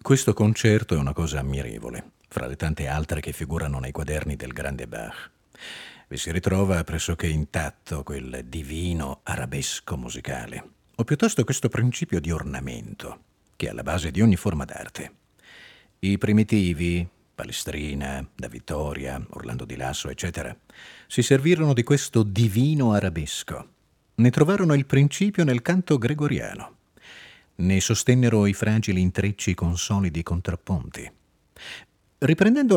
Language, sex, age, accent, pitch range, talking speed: Italian, male, 40-59, native, 75-120 Hz, 130 wpm